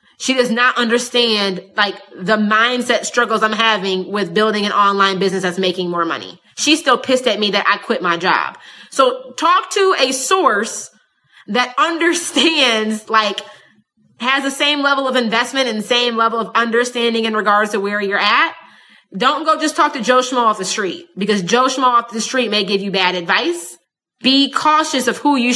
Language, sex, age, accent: English, female, 20-39, American